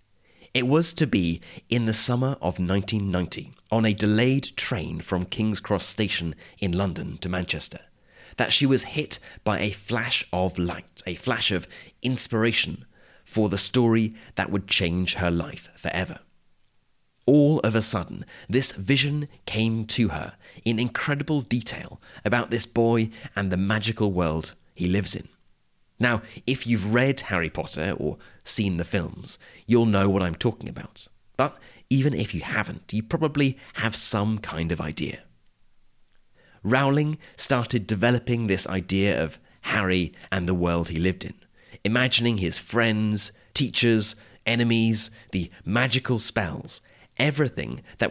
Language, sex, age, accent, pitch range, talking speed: English, male, 30-49, British, 95-120 Hz, 145 wpm